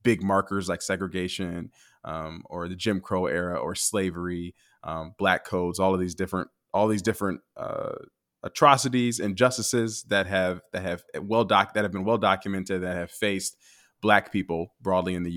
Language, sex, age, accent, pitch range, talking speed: English, male, 20-39, American, 90-110 Hz, 170 wpm